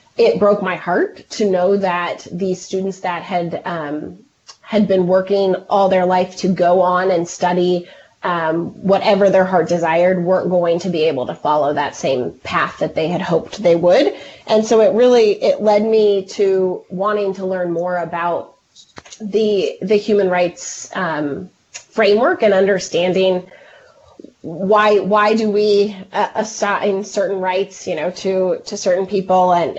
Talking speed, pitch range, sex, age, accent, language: 160 wpm, 180-210 Hz, female, 30-49, American, English